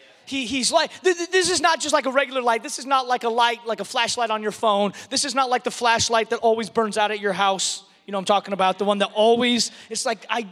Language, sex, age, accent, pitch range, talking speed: English, male, 30-49, American, 225-315 Hz, 280 wpm